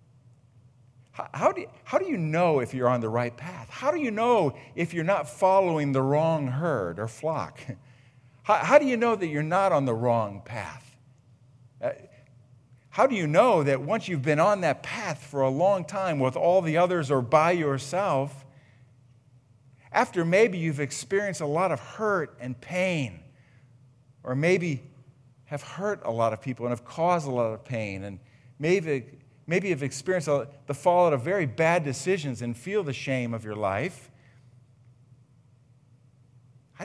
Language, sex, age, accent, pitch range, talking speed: English, male, 50-69, American, 125-175 Hz, 165 wpm